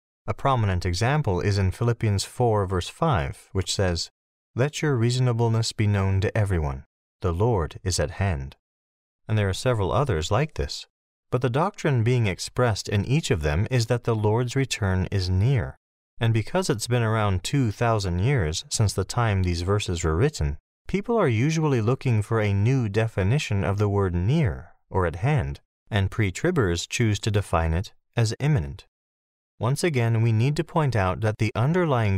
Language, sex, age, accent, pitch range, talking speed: English, male, 40-59, American, 90-125 Hz, 175 wpm